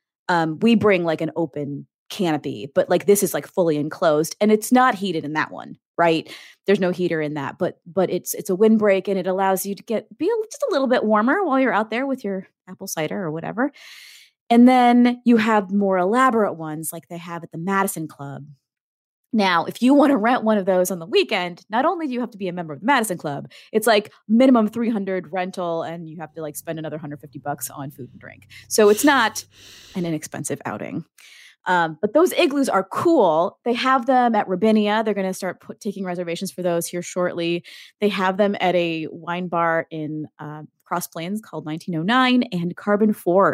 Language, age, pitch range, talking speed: English, 30-49, 160-220 Hz, 215 wpm